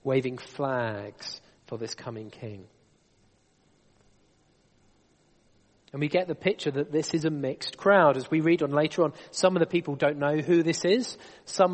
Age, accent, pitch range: 30-49, British, 135-165 Hz